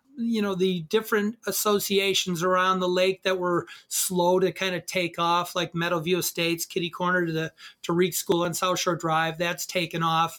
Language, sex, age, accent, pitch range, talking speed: English, male, 30-49, American, 160-185 Hz, 185 wpm